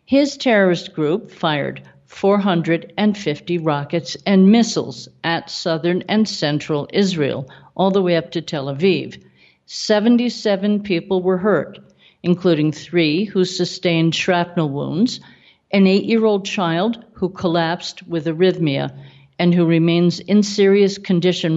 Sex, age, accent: female, 50-69, American